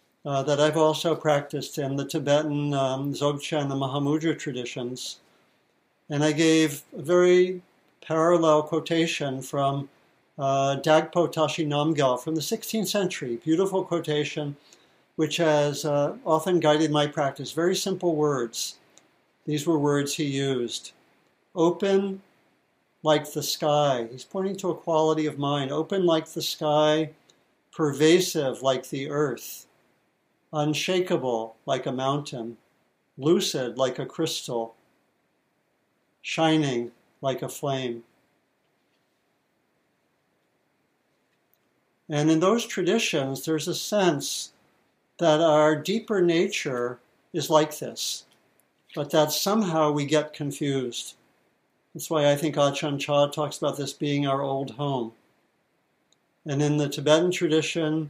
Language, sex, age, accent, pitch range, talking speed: English, male, 60-79, American, 140-165 Hz, 120 wpm